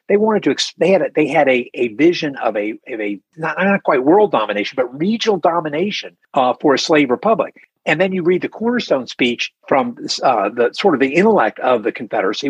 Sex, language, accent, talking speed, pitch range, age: male, English, American, 210 wpm, 140-220 Hz, 50-69